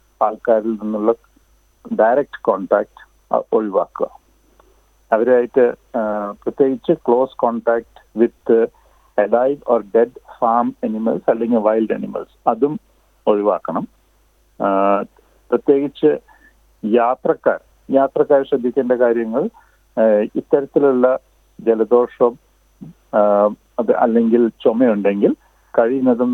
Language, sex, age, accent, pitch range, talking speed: Malayalam, male, 50-69, native, 110-130 Hz, 70 wpm